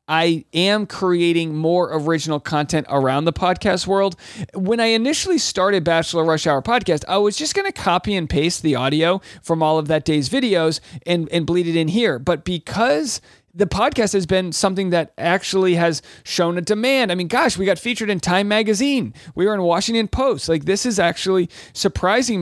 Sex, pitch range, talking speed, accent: male, 135-190 Hz, 190 wpm, American